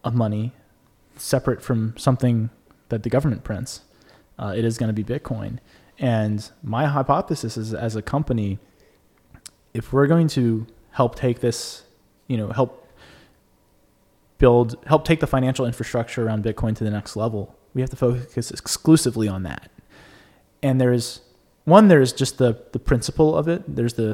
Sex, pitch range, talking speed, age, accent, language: male, 110-140 Hz, 160 wpm, 20-39, American, English